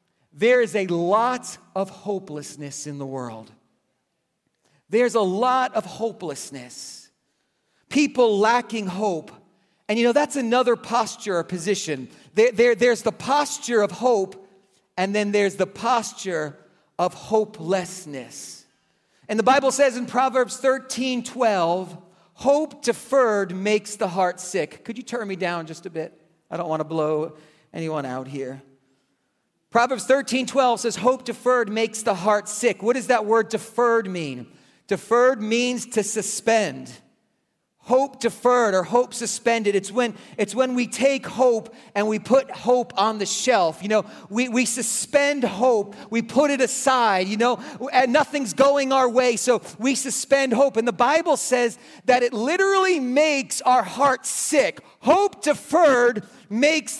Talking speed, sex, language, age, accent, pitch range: 150 wpm, male, English, 40-59, American, 190-255 Hz